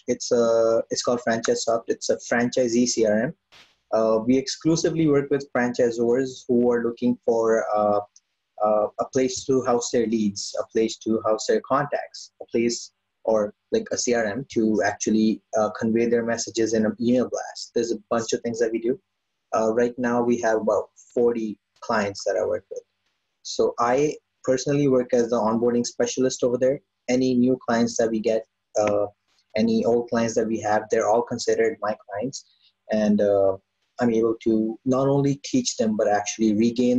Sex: male